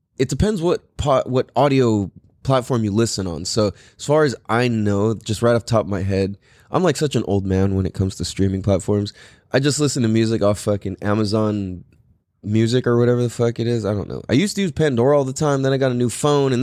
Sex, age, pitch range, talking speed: male, 20-39, 105-140 Hz, 250 wpm